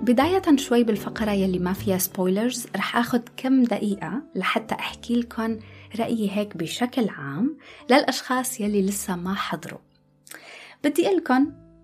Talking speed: 125 wpm